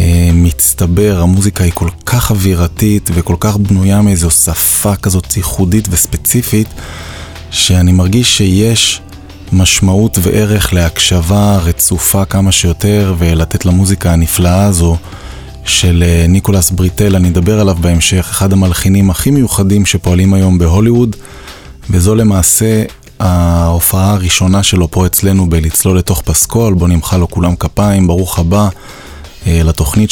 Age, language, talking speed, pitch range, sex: 20-39, Hebrew, 120 wpm, 85-100 Hz, male